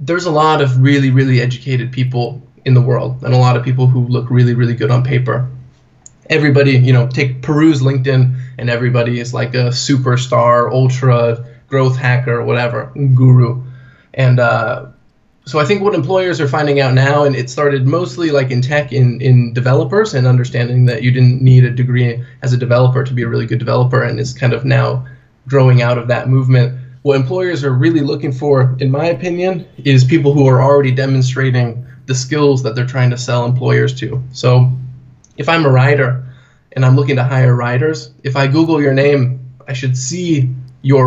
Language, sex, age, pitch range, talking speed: English, male, 20-39, 125-140 Hz, 195 wpm